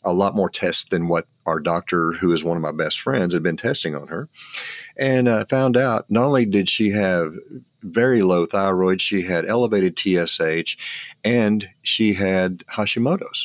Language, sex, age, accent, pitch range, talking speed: English, male, 50-69, American, 90-120 Hz, 180 wpm